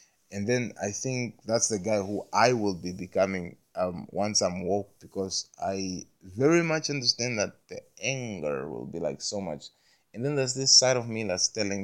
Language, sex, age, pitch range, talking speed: English, male, 20-39, 95-125 Hz, 195 wpm